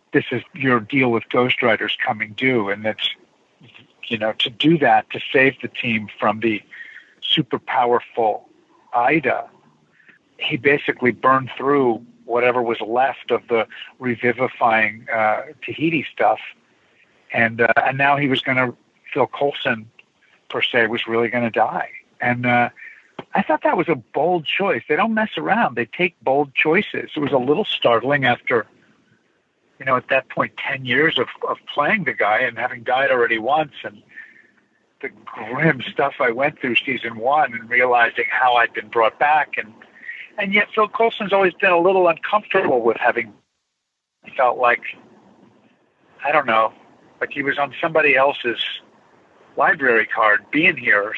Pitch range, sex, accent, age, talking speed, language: 120-180 Hz, male, American, 60-79, 160 wpm, English